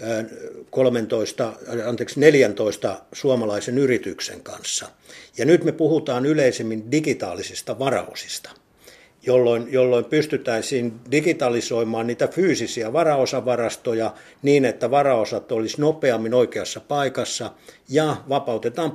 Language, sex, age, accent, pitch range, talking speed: Finnish, male, 50-69, native, 120-150 Hz, 90 wpm